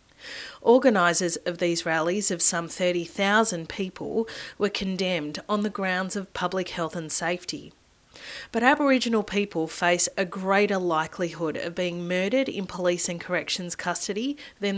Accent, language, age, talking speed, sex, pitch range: Australian, English, 30-49, 140 wpm, female, 175-215 Hz